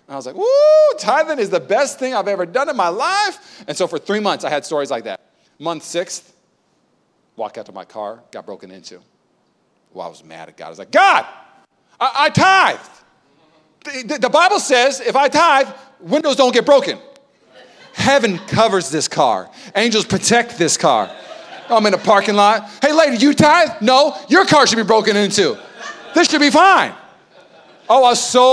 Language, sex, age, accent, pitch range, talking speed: English, male, 40-59, American, 180-275 Hz, 195 wpm